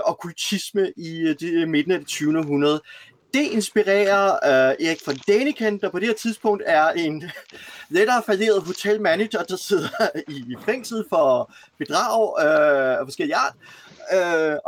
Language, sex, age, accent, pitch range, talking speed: Danish, male, 30-49, native, 155-215 Hz, 150 wpm